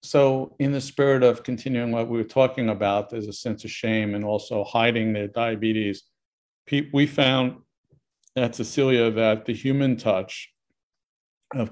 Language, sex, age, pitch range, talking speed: English, male, 50-69, 110-125 Hz, 155 wpm